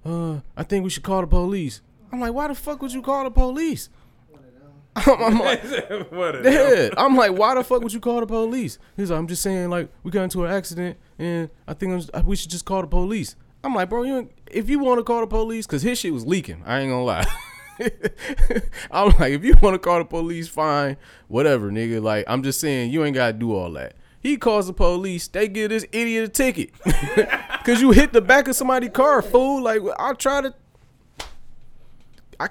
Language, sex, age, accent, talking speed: English, male, 20-39, American, 225 wpm